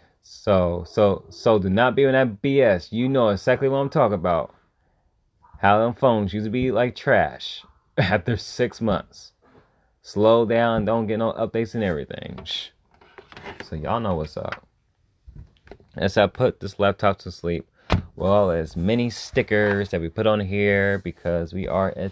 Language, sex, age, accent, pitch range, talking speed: English, male, 20-39, American, 90-115 Hz, 165 wpm